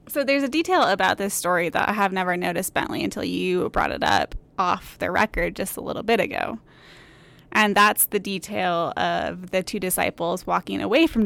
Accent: American